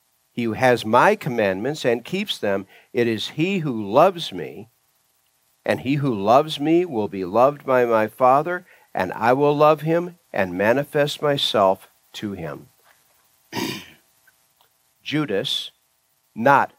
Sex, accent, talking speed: male, American, 130 wpm